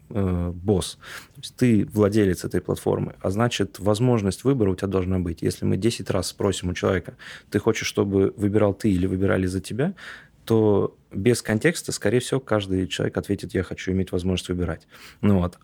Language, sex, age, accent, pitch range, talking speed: Russian, male, 20-39, native, 90-110 Hz, 175 wpm